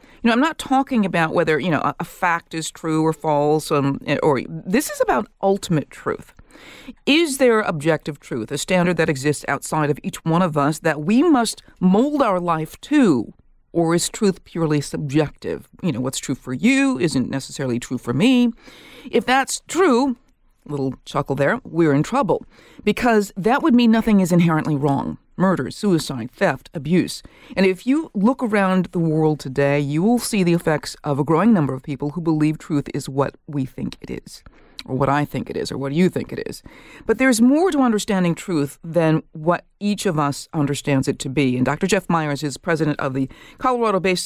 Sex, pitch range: female, 145-220 Hz